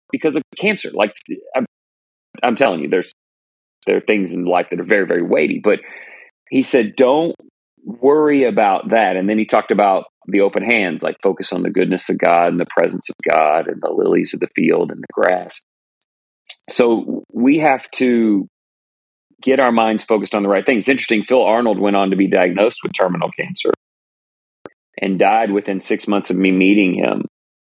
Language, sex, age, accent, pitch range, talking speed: English, male, 40-59, American, 90-110 Hz, 190 wpm